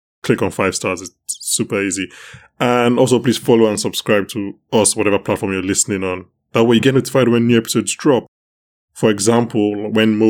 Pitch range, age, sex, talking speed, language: 100-125 Hz, 20-39, male, 190 wpm, English